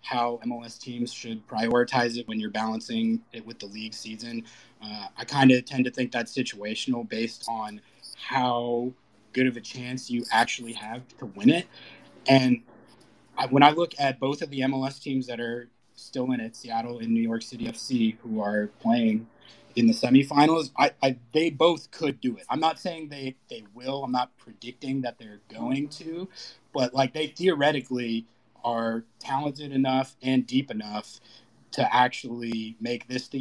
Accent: American